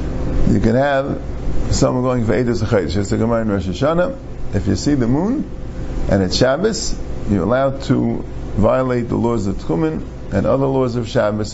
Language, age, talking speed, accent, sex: English, 50-69, 175 wpm, American, male